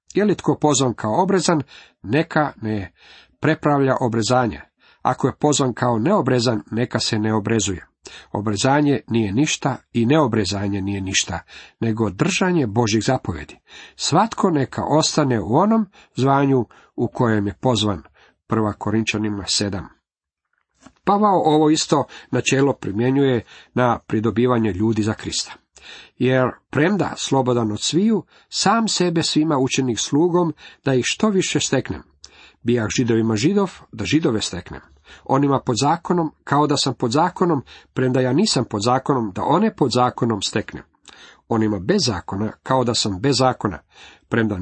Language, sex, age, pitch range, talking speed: Croatian, male, 50-69, 110-150 Hz, 135 wpm